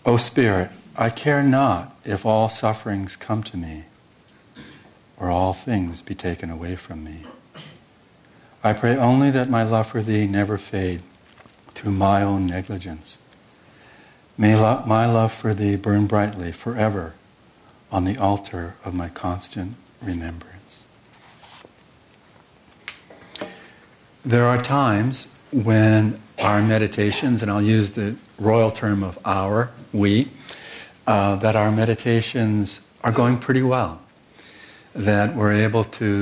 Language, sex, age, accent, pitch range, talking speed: English, male, 60-79, American, 95-115 Hz, 125 wpm